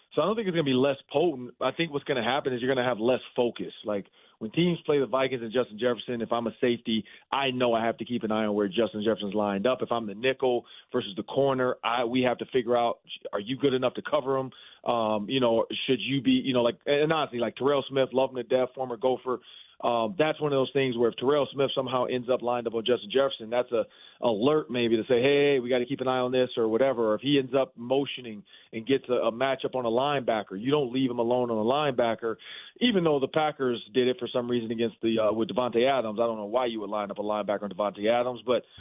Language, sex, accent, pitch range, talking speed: English, male, American, 115-135 Hz, 275 wpm